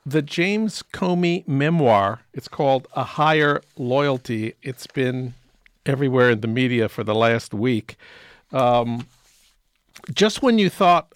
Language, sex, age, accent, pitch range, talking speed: English, male, 50-69, American, 130-160 Hz, 130 wpm